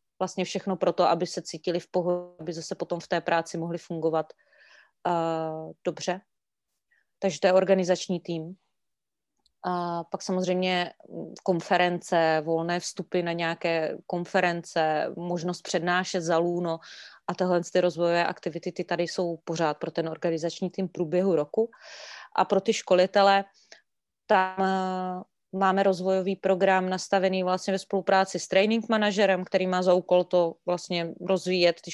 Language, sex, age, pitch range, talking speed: Czech, female, 30-49, 175-190 Hz, 145 wpm